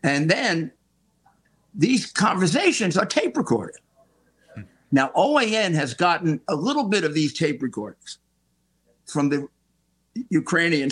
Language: English